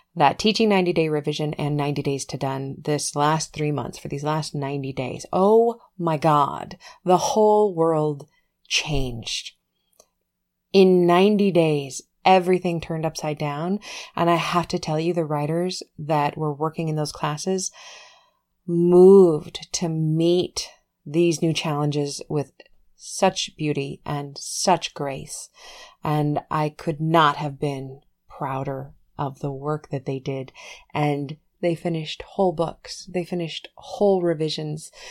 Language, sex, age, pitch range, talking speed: English, female, 30-49, 150-185 Hz, 140 wpm